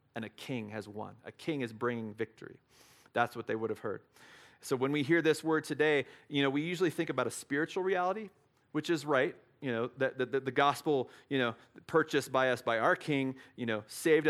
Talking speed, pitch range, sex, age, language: 220 wpm, 120-155 Hz, male, 40-59, English